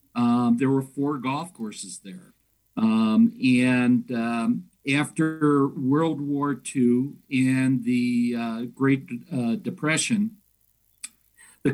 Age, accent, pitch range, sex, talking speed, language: 50-69, American, 125-160 Hz, male, 105 wpm, English